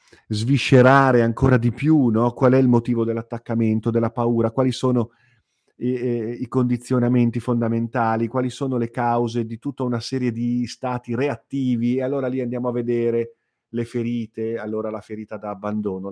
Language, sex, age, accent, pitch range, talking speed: Italian, male, 40-59, native, 105-125 Hz, 155 wpm